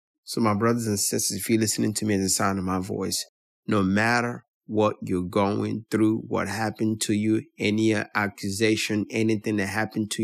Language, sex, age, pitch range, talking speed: English, male, 30-49, 105-155 Hz, 195 wpm